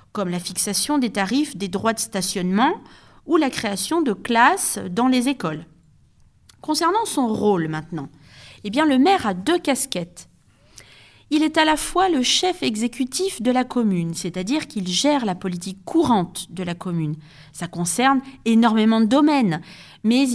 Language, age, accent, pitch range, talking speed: French, 40-59, French, 195-270 Hz, 155 wpm